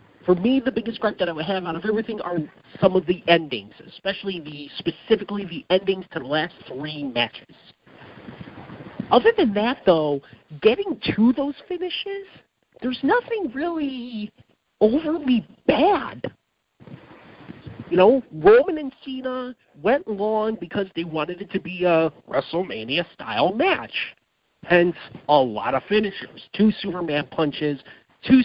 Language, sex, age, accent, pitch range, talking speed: English, male, 50-69, American, 170-245 Hz, 140 wpm